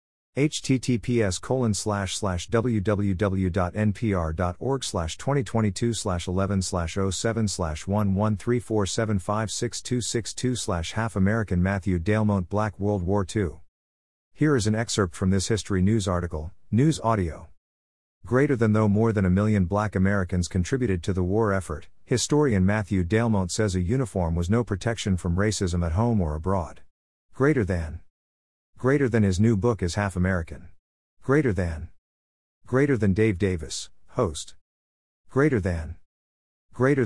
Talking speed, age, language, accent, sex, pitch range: 130 wpm, 50-69, English, American, male, 90-110 Hz